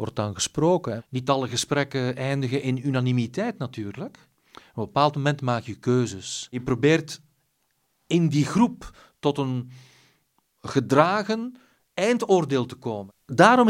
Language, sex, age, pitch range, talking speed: Dutch, male, 40-59, 120-165 Hz, 125 wpm